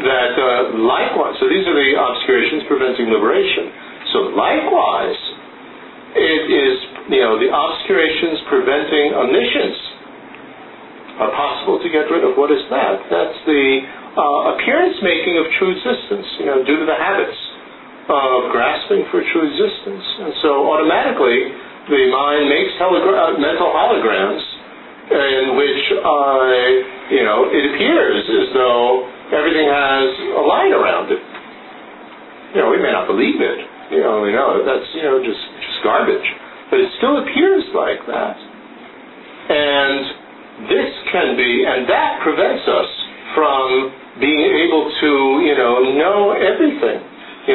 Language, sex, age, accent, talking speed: English, male, 50-69, American, 145 wpm